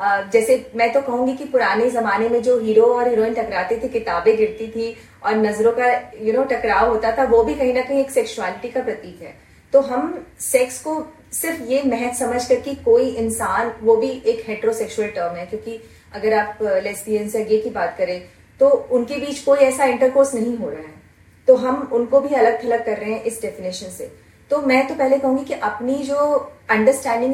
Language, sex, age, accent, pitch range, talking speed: Hindi, female, 30-49, native, 220-270 Hz, 200 wpm